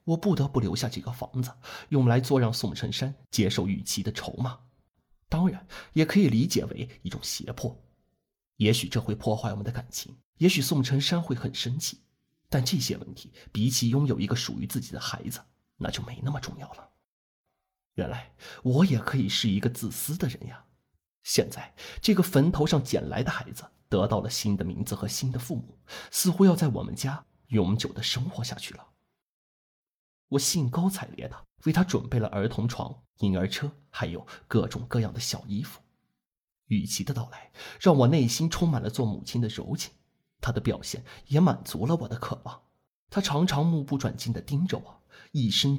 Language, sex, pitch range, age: Chinese, male, 115-145 Hz, 30-49